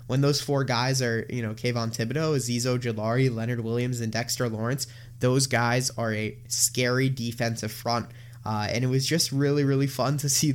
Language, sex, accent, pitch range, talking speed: English, male, American, 120-140 Hz, 190 wpm